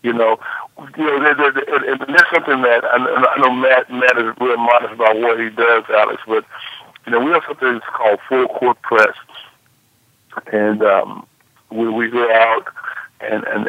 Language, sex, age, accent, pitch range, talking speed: English, male, 60-79, American, 110-130 Hz, 170 wpm